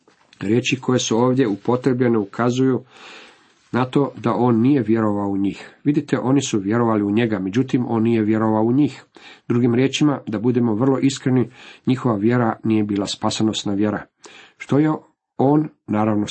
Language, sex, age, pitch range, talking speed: Croatian, male, 50-69, 105-130 Hz, 155 wpm